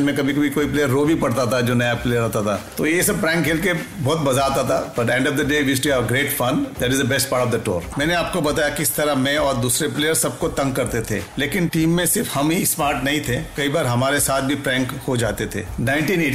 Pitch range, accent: 120-150 Hz, native